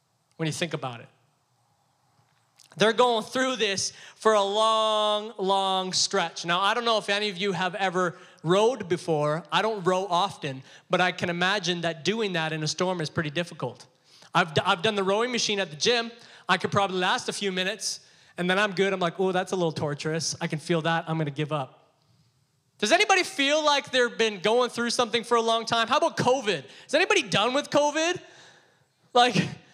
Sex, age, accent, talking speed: male, 20-39, American, 205 wpm